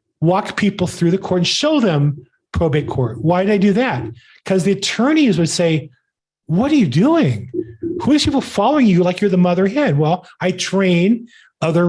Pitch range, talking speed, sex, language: 160-210 Hz, 190 wpm, male, English